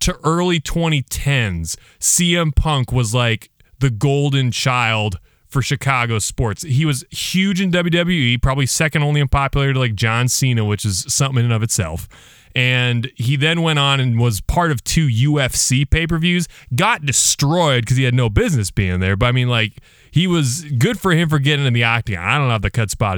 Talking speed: 195 wpm